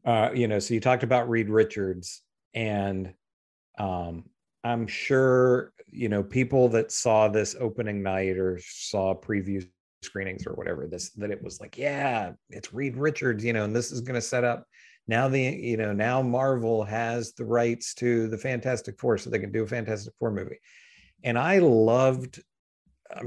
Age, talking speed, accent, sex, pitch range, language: 40-59, 180 wpm, American, male, 105-125 Hz, English